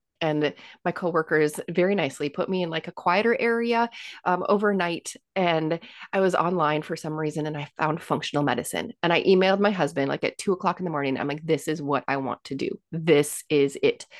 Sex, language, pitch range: female, English, 150-200 Hz